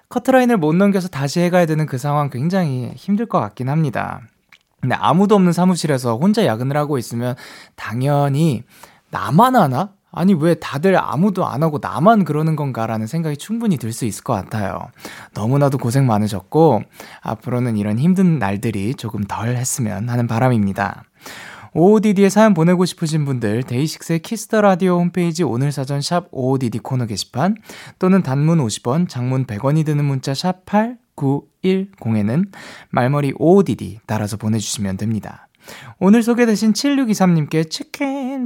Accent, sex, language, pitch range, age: native, male, Korean, 125-185 Hz, 20-39